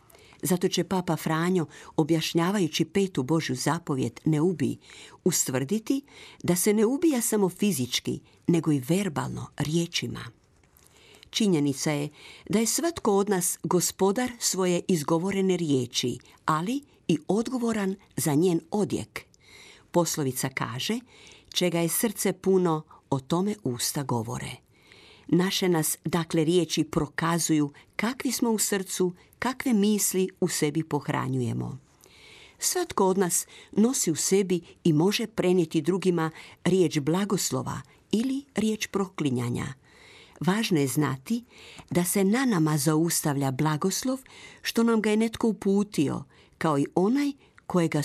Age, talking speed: 50-69, 120 wpm